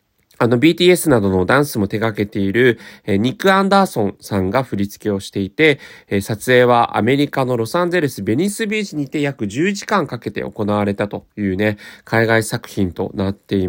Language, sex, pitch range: Japanese, male, 105-155 Hz